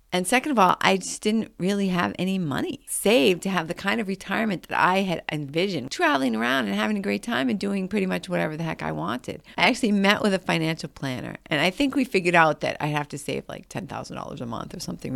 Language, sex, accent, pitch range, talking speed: English, female, American, 150-195 Hz, 245 wpm